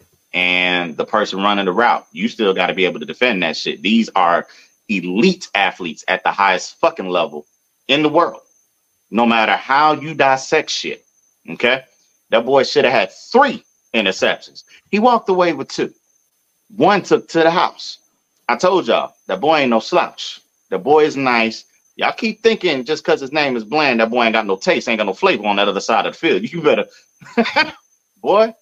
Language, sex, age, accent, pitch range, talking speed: English, male, 30-49, American, 100-165 Hz, 195 wpm